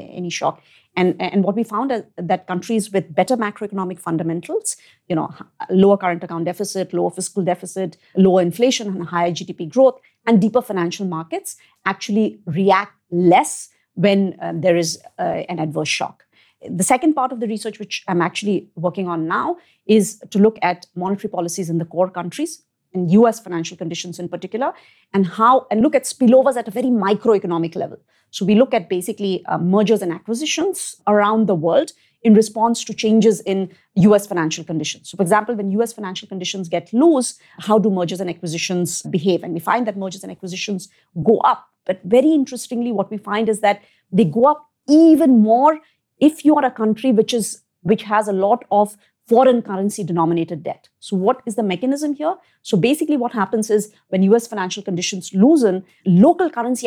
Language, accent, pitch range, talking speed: English, Indian, 180-235 Hz, 185 wpm